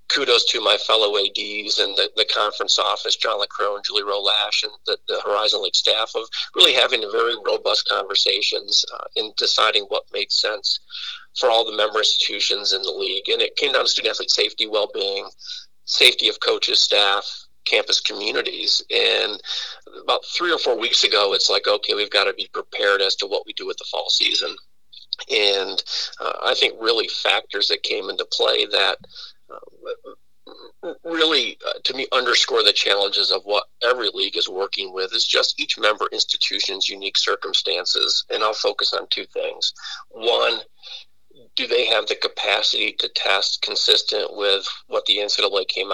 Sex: male